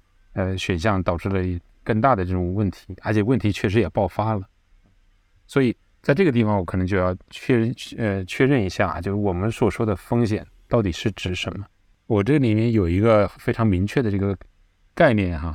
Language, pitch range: Chinese, 95-115 Hz